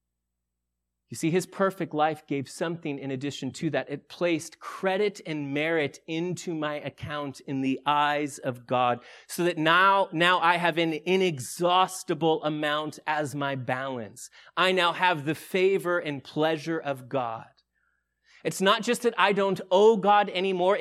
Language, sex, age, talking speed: English, male, 30-49, 155 wpm